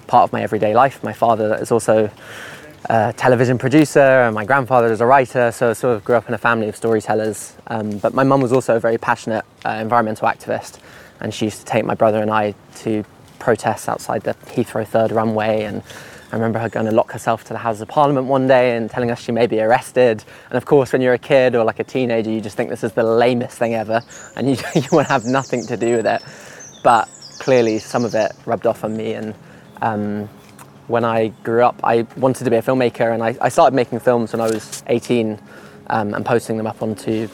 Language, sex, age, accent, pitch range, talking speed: English, male, 20-39, British, 110-125 Hz, 235 wpm